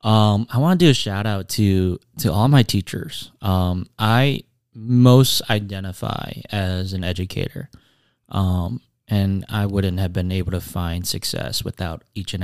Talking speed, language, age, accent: 160 wpm, English, 20-39, American